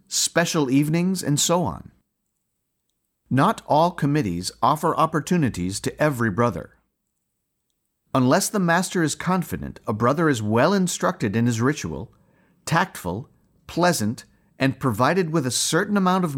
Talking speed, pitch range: 130 wpm, 120-165 Hz